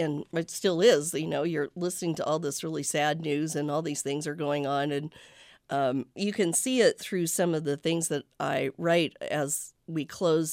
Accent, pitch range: American, 145-175 Hz